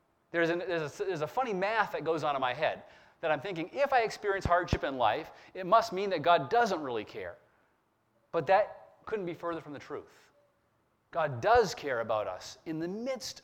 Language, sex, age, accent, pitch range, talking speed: English, male, 30-49, American, 155-210 Hz, 195 wpm